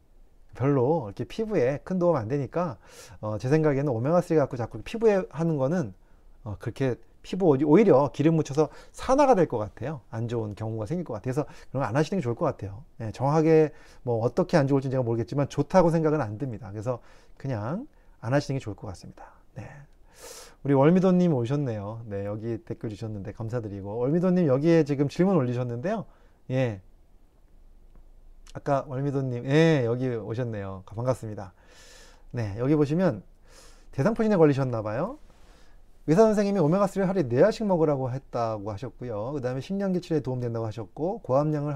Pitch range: 110-155 Hz